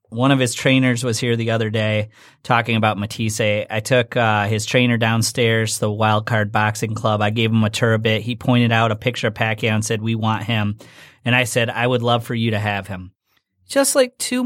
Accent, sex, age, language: American, male, 30-49, English